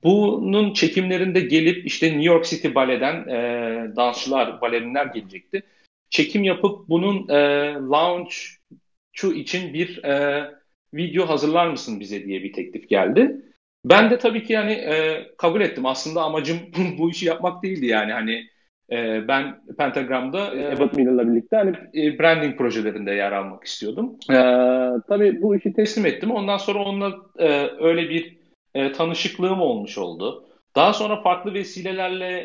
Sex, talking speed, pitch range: male, 140 wpm, 130-185 Hz